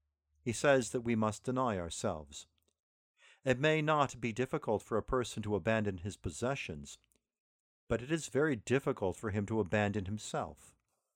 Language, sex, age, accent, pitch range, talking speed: English, male, 50-69, American, 105-135 Hz, 155 wpm